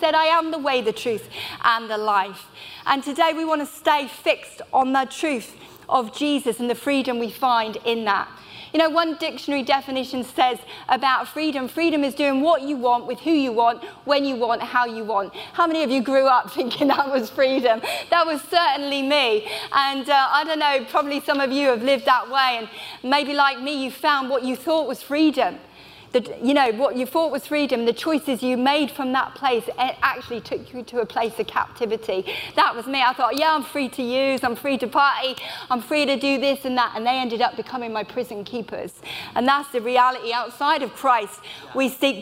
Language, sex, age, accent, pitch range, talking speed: English, female, 30-49, British, 245-290 Hz, 220 wpm